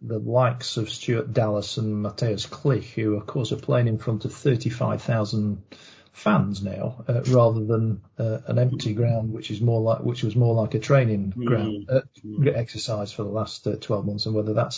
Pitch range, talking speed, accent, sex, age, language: 115-150 Hz, 195 wpm, British, male, 40-59, English